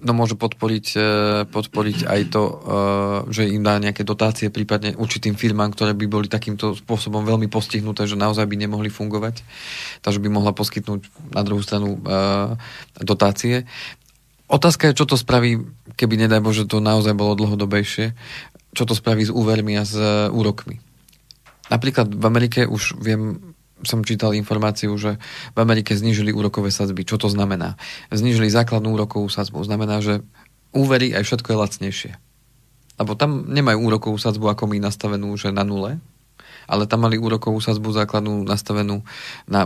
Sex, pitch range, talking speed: male, 105-120 Hz, 155 wpm